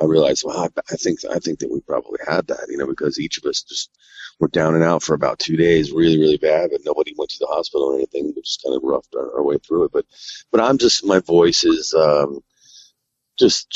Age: 40-59